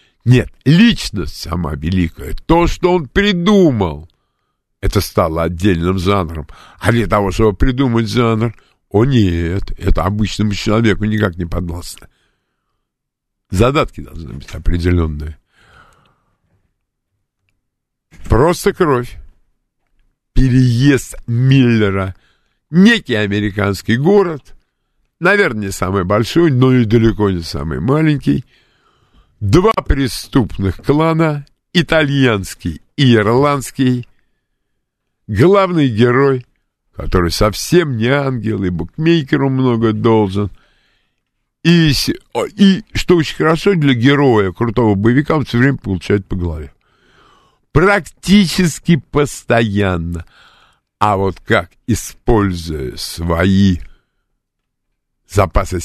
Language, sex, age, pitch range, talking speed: Russian, male, 50-69, 90-140 Hz, 90 wpm